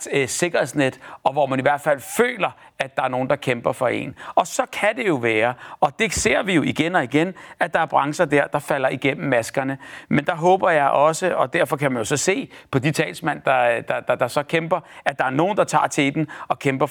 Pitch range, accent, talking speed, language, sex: 125-150 Hz, native, 250 wpm, Danish, male